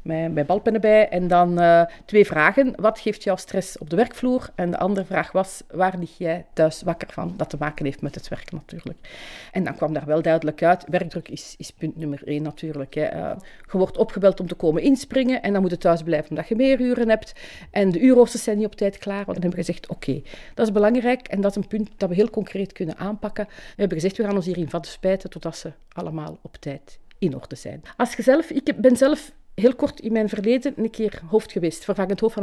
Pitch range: 180-255 Hz